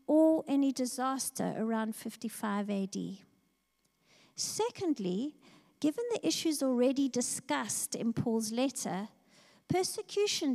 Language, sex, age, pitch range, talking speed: English, female, 50-69, 215-280 Hz, 90 wpm